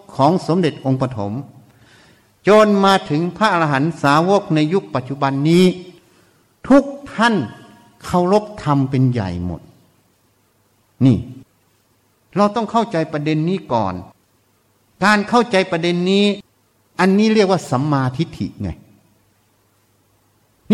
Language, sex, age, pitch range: Thai, male, 60-79, 115-185 Hz